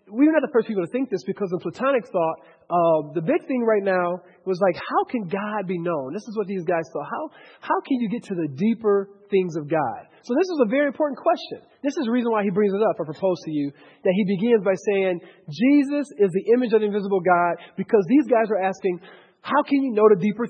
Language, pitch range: English, 180-260 Hz